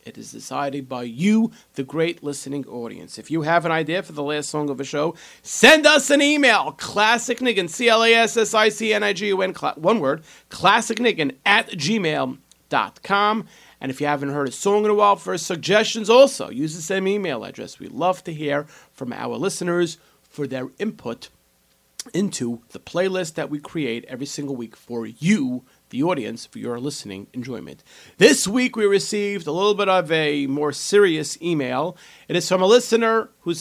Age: 40-59